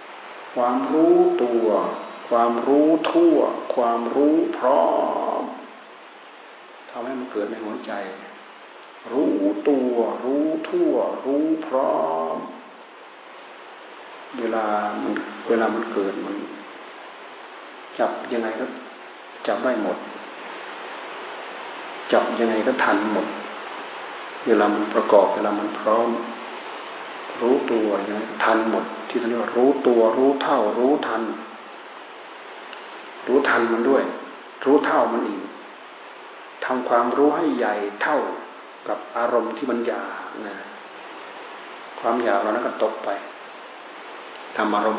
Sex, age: male, 60-79